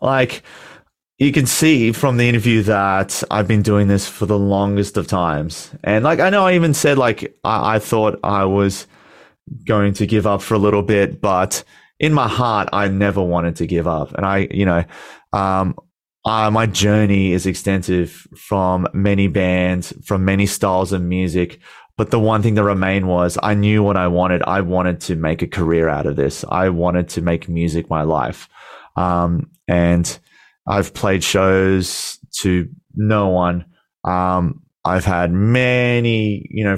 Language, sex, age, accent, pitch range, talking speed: English, male, 30-49, Australian, 90-110 Hz, 175 wpm